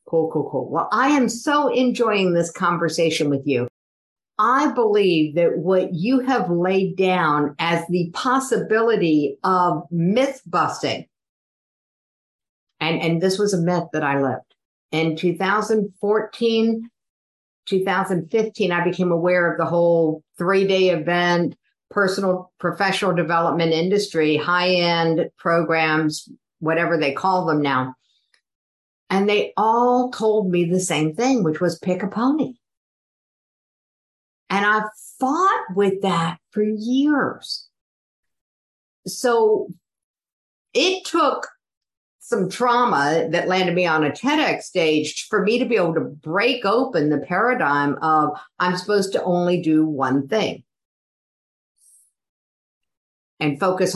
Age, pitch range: 50-69, 160-220 Hz